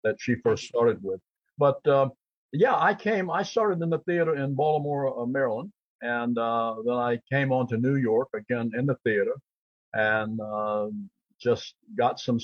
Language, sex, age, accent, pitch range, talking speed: English, male, 60-79, American, 120-160 Hz, 175 wpm